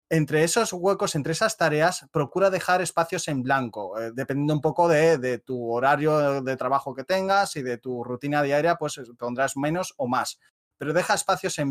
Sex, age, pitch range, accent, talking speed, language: male, 30-49, 135-165 Hz, Spanish, 190 wpm, Spanish